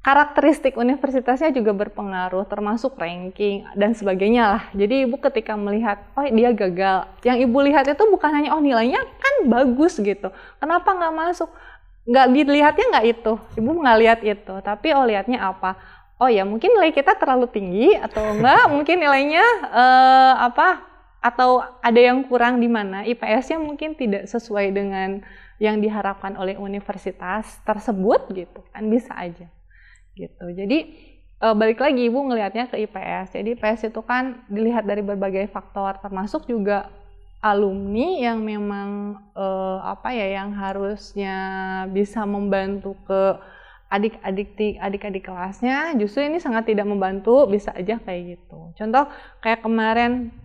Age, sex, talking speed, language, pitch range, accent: 20-39, female, 140 wpm, Indonesian, 195-255 Hz, native